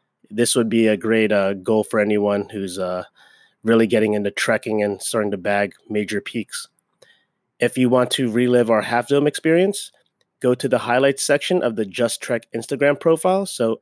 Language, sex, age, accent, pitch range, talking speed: English, male, 30-49, American, 110-125 Hz, 180 wpm